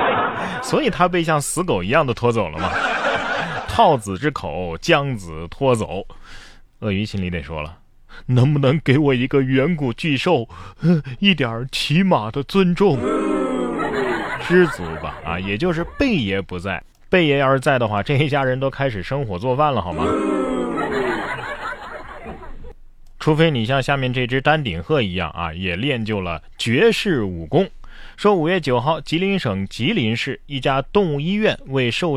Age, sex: 30-49, male